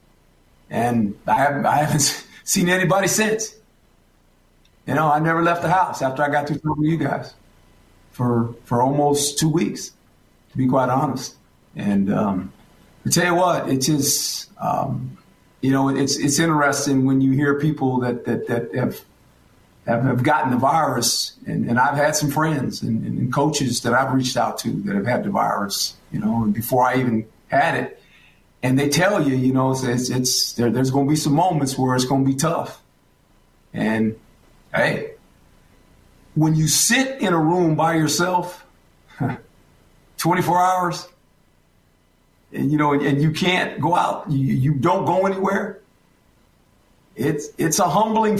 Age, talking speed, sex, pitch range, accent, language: 50-69, 165 wpm, male, 125-165 Hz, American, English